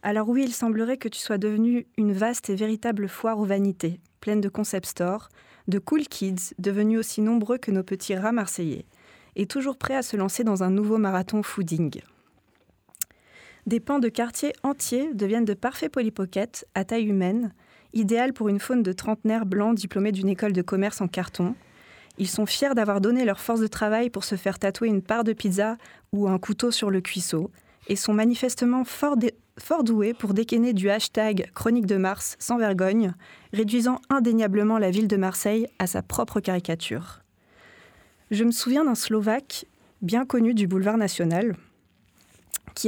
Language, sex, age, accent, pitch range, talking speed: French, female, 20-39, French, 195-230 Hz, 180 wpm